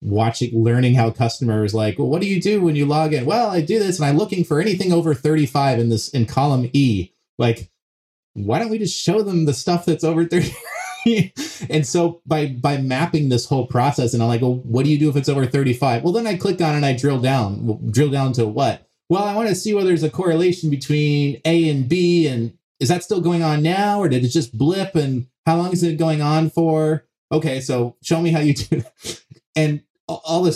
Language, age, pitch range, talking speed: English, 30-49, 115-160 Hz, 240 wpm